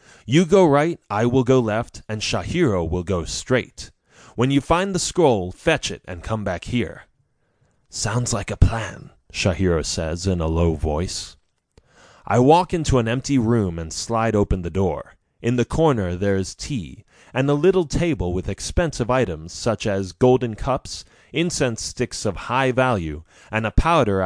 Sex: male